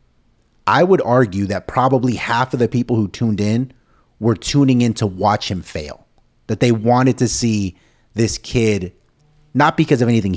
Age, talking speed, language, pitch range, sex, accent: 30-49, 175 wpm, English, 100-125 Hz, male, American